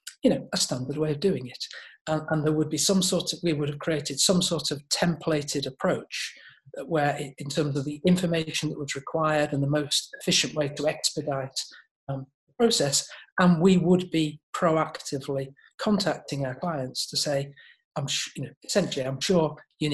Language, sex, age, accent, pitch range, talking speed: English, male, 40-59, British, 140-175 Hz, 185 wpm